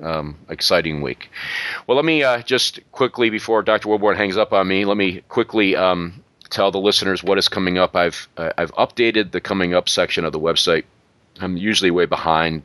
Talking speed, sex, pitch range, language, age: 200 wpm, male, 85-105 Hz, English, 40-59